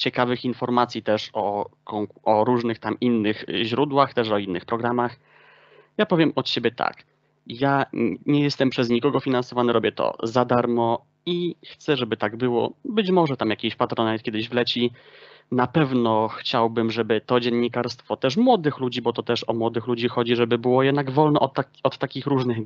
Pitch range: 115-145 Hz